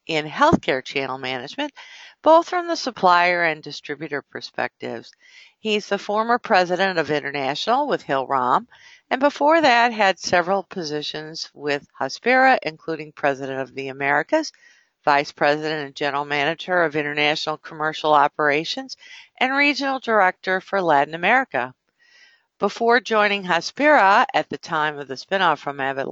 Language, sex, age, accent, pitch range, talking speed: English, female, 50-69, American, 150-235 Hz, 135 wpm